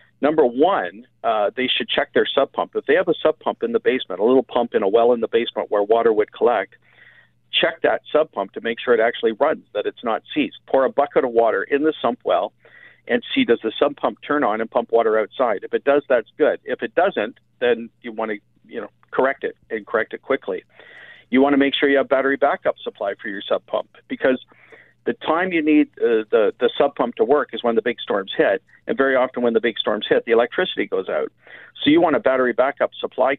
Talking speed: 245 wpm